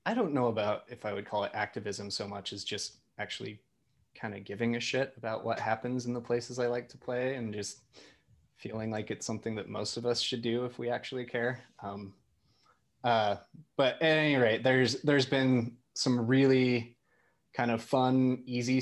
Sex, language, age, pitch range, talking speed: male, English, 20-39, 105-120 Hz, 195 wpm